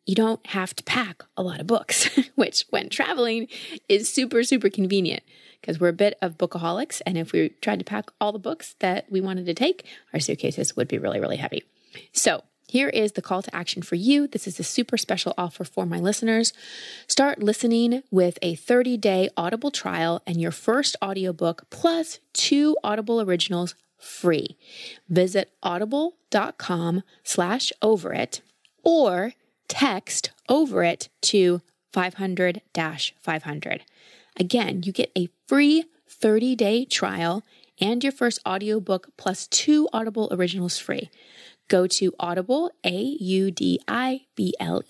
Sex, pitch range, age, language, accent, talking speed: female, 170-240 Hz, 20-39, English, American, 155 wpm